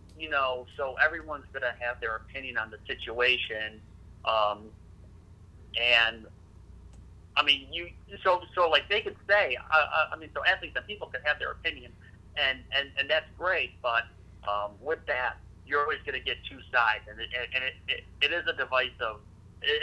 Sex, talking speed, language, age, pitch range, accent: male, 180 wpm, English, 40-59, 95-125 Hz, American